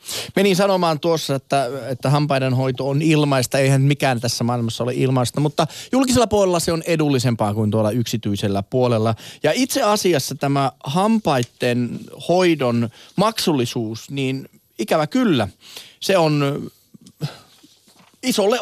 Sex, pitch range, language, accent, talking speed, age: male, 115-160 Hz, Finnish, native, 120 wpm, 30-49